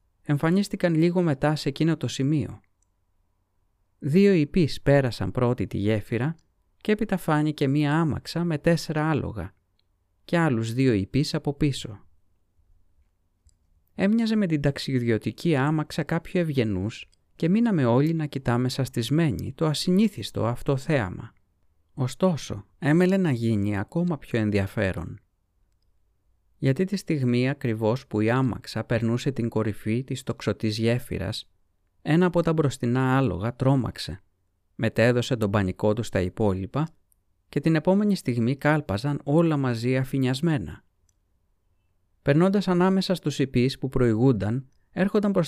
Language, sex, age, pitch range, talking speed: Greek, male, 30-49, 95-150 Hz, 120 wpm